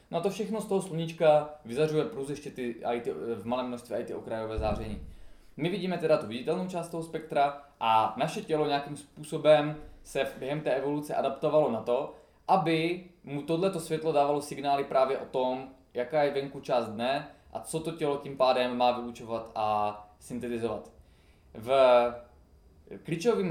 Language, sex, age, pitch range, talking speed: Czech, male, 20-39, 120-150 Hz, 165 wpm